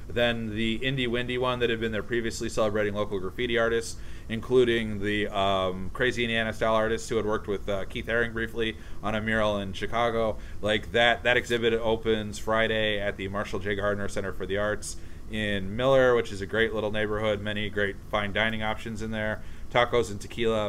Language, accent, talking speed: English, American, 195 wpm